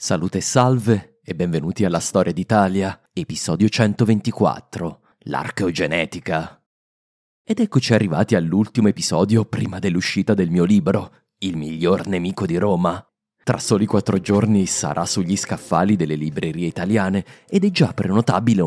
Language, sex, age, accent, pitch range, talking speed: English, male, 30-49, Italian, 85-115 Hz, 130 wpm